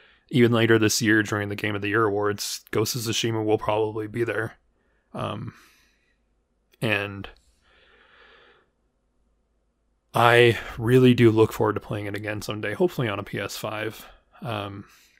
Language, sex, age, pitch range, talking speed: English, male, 20-39, 105-120 Hz, 140 wpm